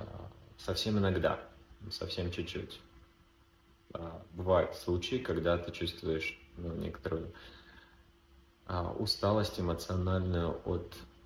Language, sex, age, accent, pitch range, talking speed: Russian, male, 20-39, native, 85-95 Hz, 75 wpm